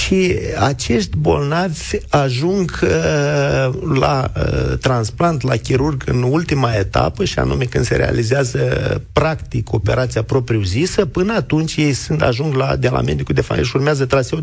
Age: 50-69